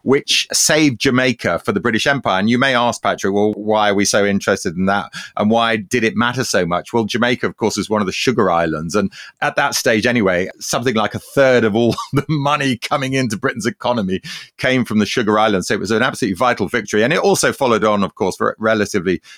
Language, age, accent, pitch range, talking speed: English, 30-49, British, 95-125 Hz, 230 wpm